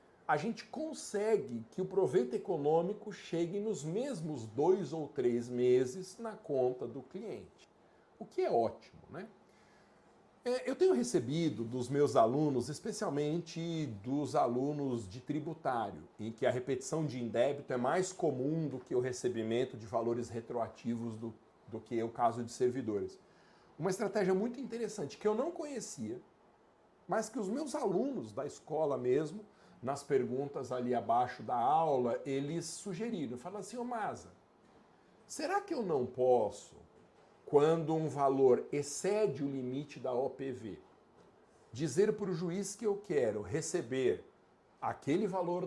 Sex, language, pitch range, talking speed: male, Portuguese, 130-205 Hz, 140 wpm